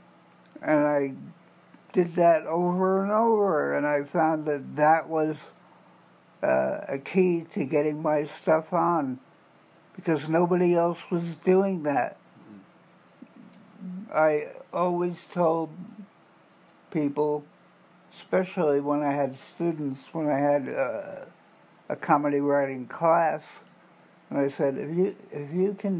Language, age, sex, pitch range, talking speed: English, 60-79, male, 150-185 Hz, 120 wpm